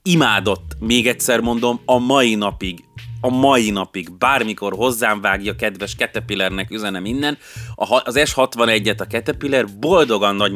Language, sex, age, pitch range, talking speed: Hungarian, male, 30-49, 95-125 Hz, 130 wpm